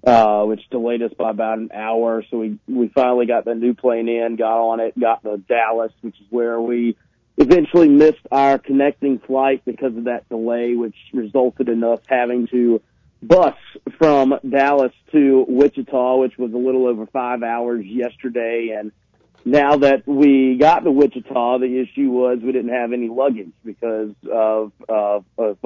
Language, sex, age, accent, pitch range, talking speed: English, male, 40-59, American, 115-130 Hz, 175 wpm